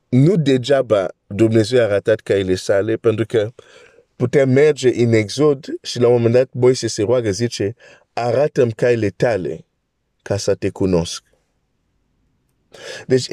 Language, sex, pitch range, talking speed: Romanian, male, 120-170 Hz, 145 wpm